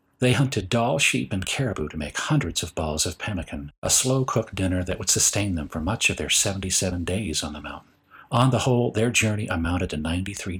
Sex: male